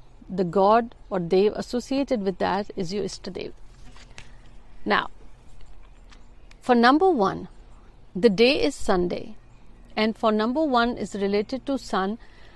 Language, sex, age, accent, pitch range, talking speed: Hindi, female, 50-69, native, 195-260 Hz, 130 wpm